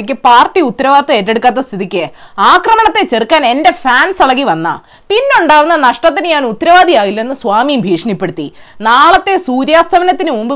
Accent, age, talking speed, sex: native, 20-39, 110 wpm, female